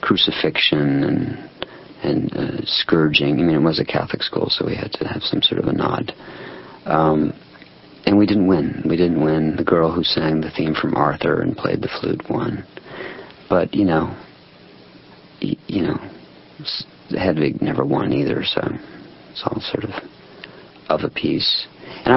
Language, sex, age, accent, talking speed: English, male, 50-69, American, 165 wpm